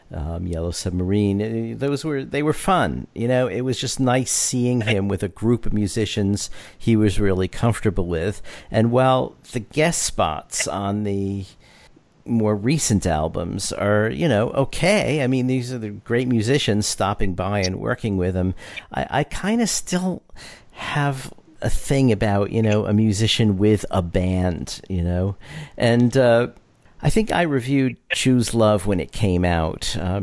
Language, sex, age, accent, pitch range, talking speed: English, male, 50-69, American, 95-120 Hz, 165 wpm